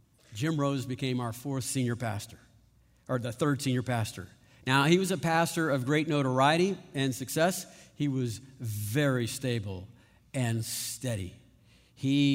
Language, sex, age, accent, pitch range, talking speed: English, male, 50-69, American, 120-145 Hz, 140 wpm